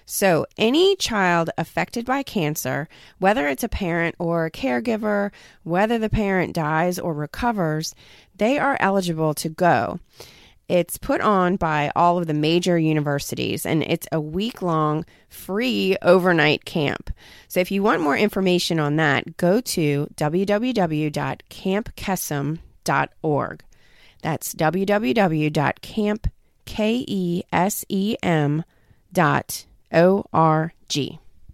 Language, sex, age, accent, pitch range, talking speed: English, female, 30-49, American, 155-205 Hz, 105 wpm